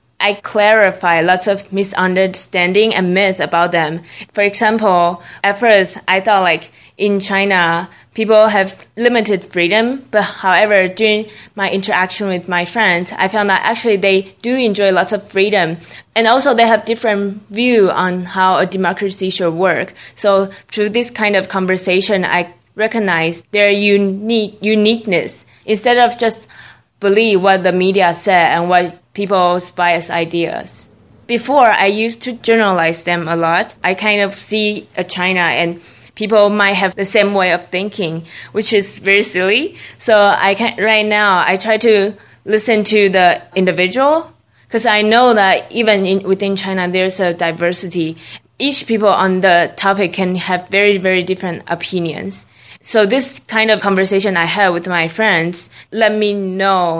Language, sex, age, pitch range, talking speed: English, female, 20-39, 180-215 Hz, 160 wpm